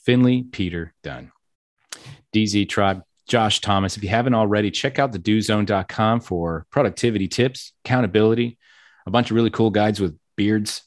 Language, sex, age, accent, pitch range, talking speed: English, male, 30-49, American, 90-110 Hz, 150 wpm